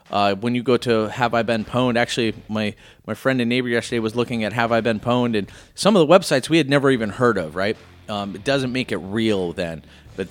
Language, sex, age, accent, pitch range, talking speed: English, male, 30-49, American, 110-140 Hz, 250 wpm